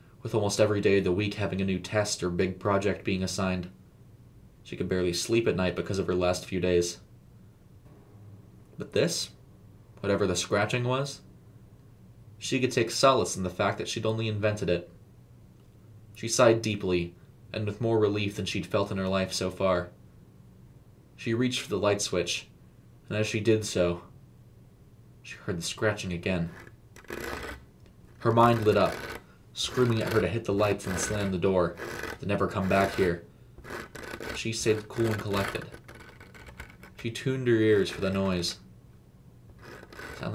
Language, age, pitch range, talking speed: English, 20-39, 90-115 Hz, 165 wpm